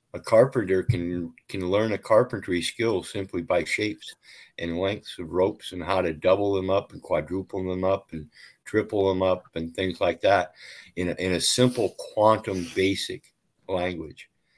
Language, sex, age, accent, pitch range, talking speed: English, male, 50-69, American, 85-100 Hz, 170 wpm